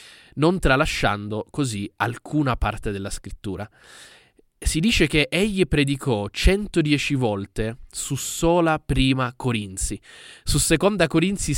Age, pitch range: 20-39, 115-155 Hz